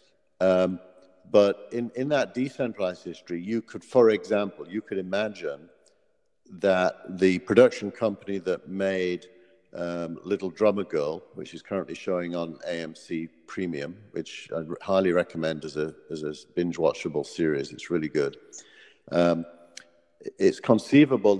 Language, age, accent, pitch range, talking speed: English, 50-69, British, 85-105 Hz, 135 wpm